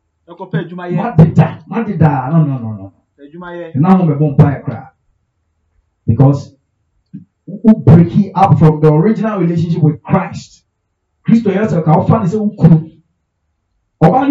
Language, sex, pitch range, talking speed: English, male, 115-175 Hz, 65 wpm